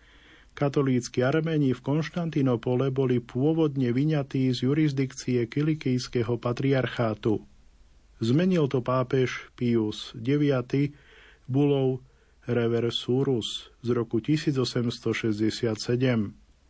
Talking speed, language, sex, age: 75 wpm, Slovak, male, 40-59